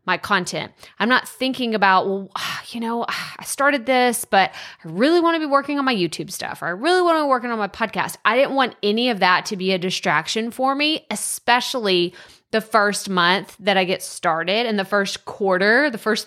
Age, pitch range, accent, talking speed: 20-39, 190-245 Hz, American, 220 wpm